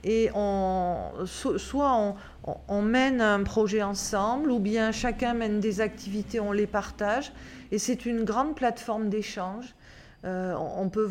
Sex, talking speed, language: female, 145 wpm, French